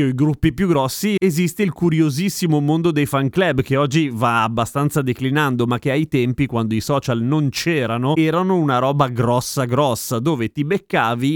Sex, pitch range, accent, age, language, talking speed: male, 125-160 Hz, native, 30-49, Italian, 180 wpm